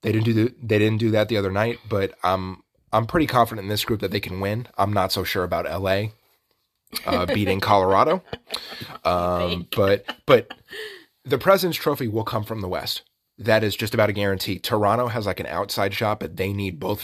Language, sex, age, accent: English, male, 30-49, American